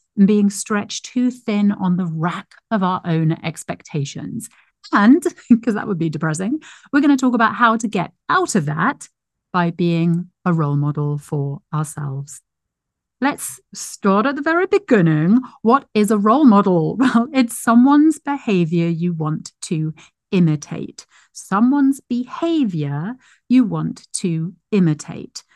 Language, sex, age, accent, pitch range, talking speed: English, female, 40-59, British, 165-245 Hz, 145 wpm